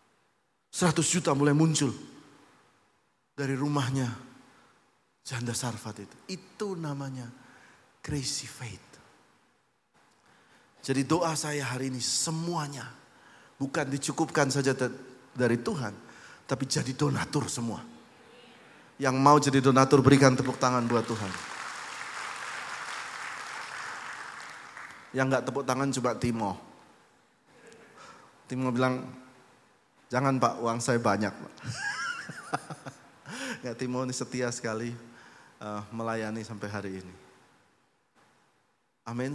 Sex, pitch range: male, 115-140 Hz